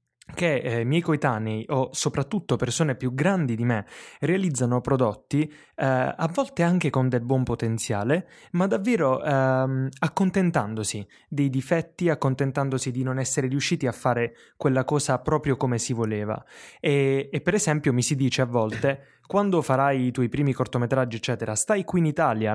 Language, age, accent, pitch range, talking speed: Italian, 20-39, native, 125-155 Hz, 160 wpm